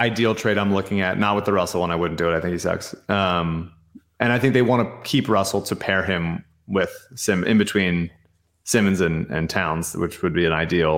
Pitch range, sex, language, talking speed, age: 90-115 Hz, male, English, 235 wpm, 30-49